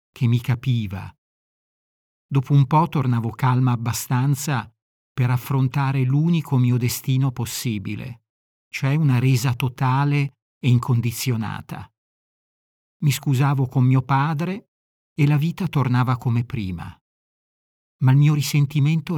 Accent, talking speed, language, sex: native, 115 wpm, Italian, male